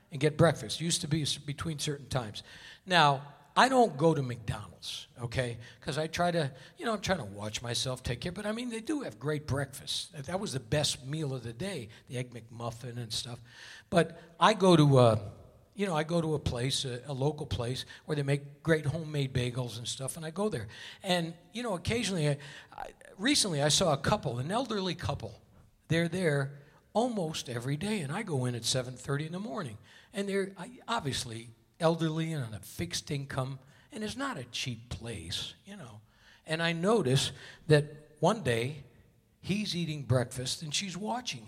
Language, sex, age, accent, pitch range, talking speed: English, male, 60-79, American, 120-165 Hz, 195 wpm